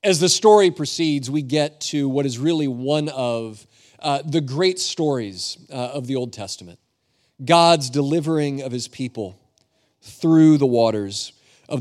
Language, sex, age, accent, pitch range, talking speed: English, male, 40-59, American, 125-170 Hz, 150 wpm